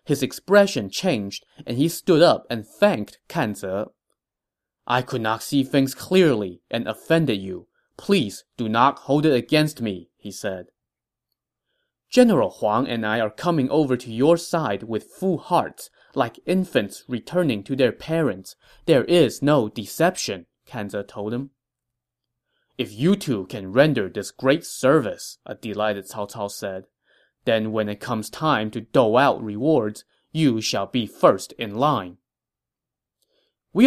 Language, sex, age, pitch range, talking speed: English, male, 20-39, 105-155 Hz, 145 wpm